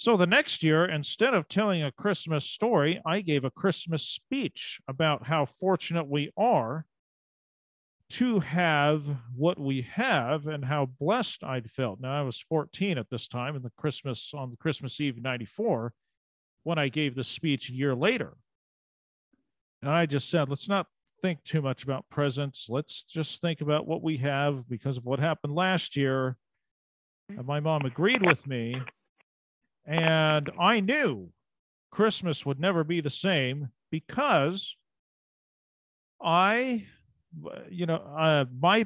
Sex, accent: male, American